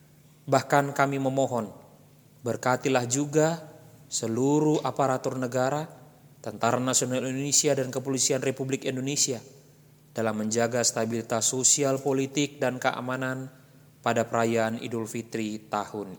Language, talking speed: English, 100 wpm